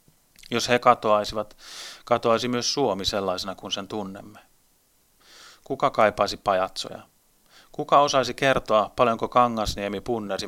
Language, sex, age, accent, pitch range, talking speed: Finnish, male, 30-49, native, 105-120 Hz, 110 wpm